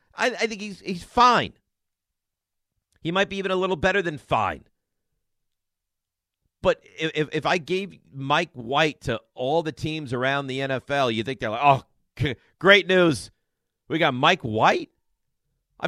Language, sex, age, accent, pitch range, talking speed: English, male, 50-69, American, 100-150 Hz, 155 wpm